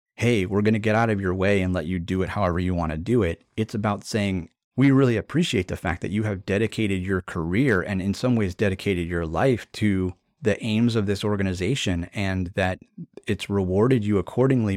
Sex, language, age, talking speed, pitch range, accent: male, English, 30-49, 215 wpm, 85-110 Hz, American